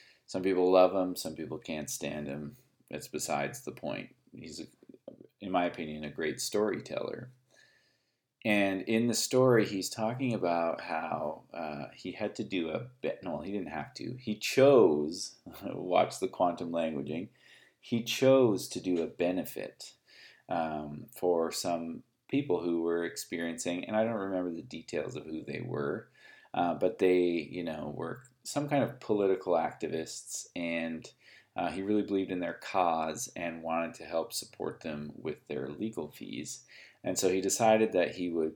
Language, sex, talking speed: English, male, 165 wpm